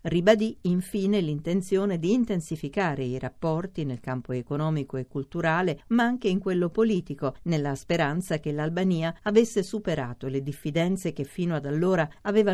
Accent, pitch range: native, 145-185 Hz